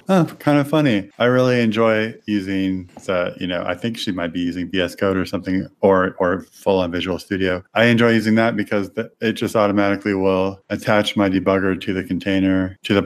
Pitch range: 90-110 Hz